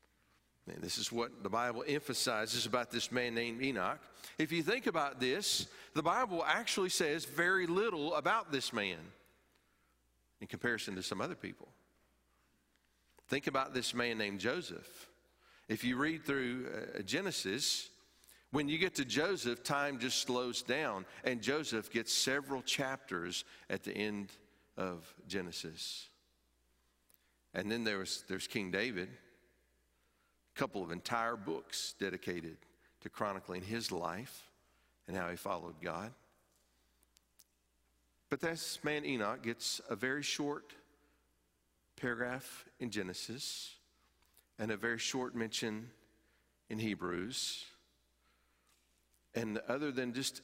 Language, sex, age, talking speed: English, male, 50-69, 125 wpm